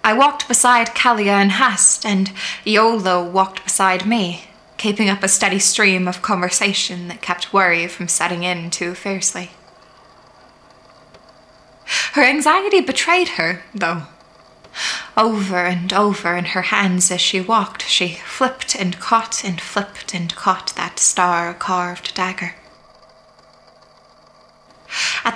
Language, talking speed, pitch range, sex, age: English, 125 wpm, 175-220 Hz, female, 20-39